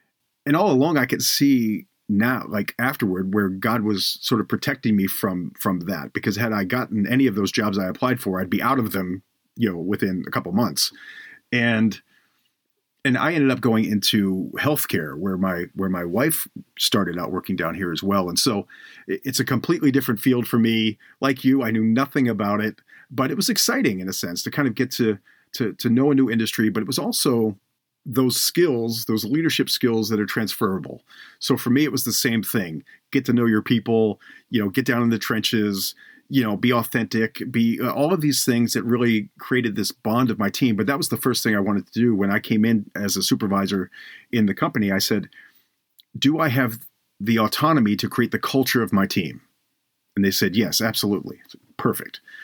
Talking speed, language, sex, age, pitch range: 210 wpm, English, male, 40-59, 105-130 Hz